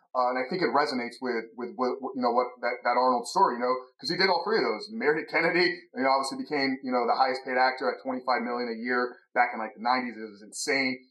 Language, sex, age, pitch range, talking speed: English, male, 30-49, 125-160 Hz, 280 wpm